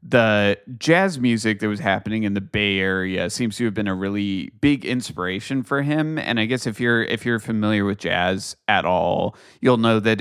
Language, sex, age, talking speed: English, male, 30-49, 205 wpm